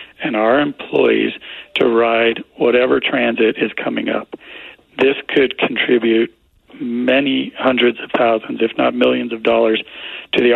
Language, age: English, 40-59